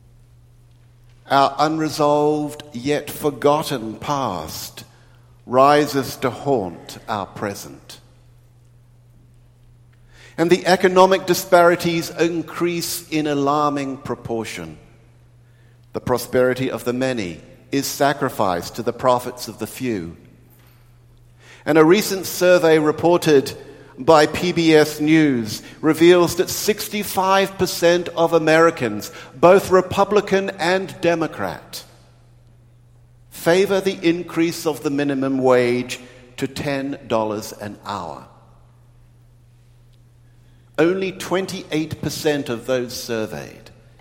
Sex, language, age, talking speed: male, English, 50-69, 85 wpm